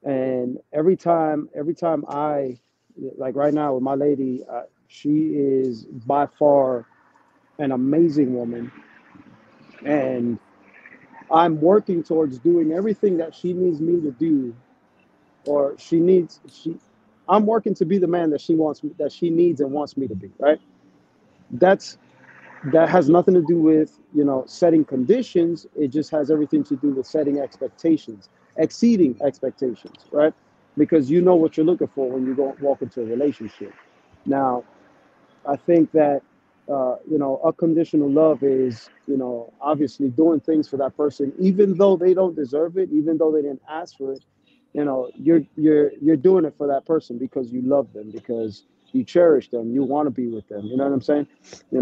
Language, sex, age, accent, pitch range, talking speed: English, male, 40-59, American, 135-165 Hz, 175 wpm